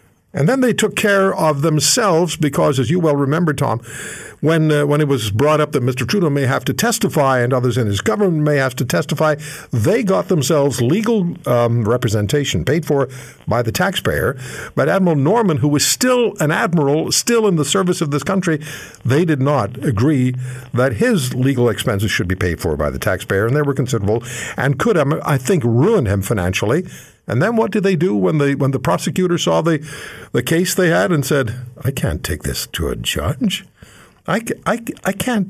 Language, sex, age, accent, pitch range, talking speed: English, male, 60-79, American, 120-175 Hz, 200 wpm